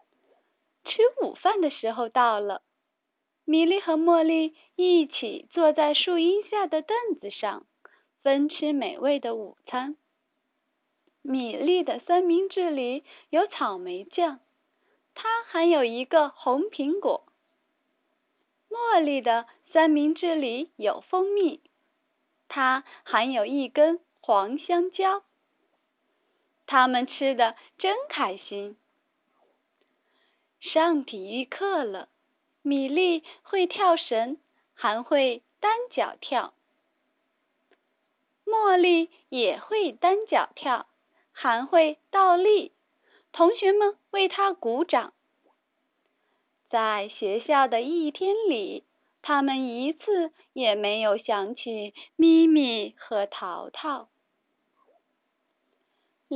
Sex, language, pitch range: female, Chinese, 270-350 Hz